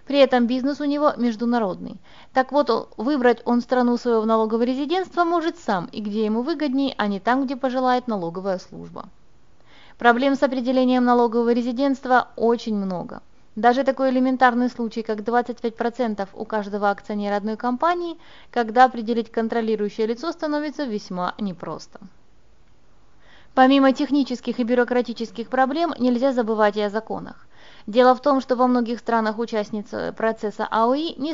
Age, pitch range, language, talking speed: 20-39, 215-265 Hz, Russian, 140 wpm